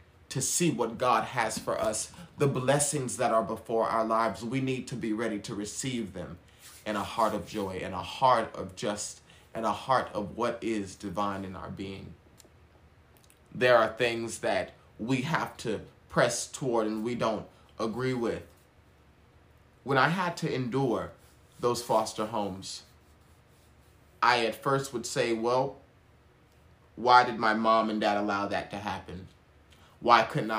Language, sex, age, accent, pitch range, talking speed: English, male, 20-39, American, 105-125 Hz, 160 wpm